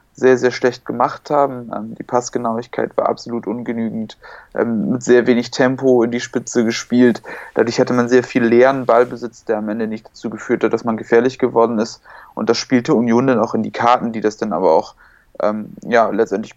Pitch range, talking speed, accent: 110-125 Hz, 190 wpm, German